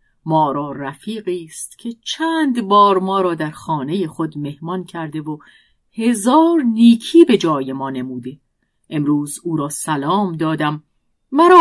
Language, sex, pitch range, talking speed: Persian, female, 150-230 Hz, 140 wpm